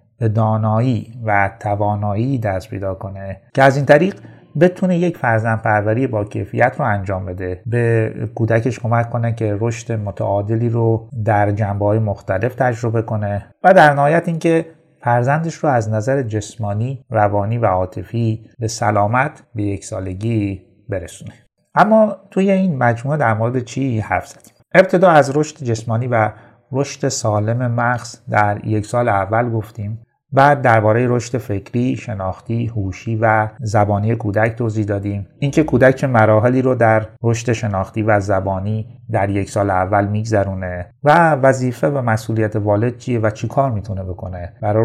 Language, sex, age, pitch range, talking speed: Persian, male, 30-49, 100-125 Hz, 145 wpm